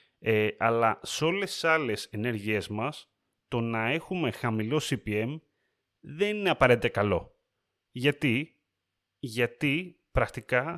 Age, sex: 30-49, male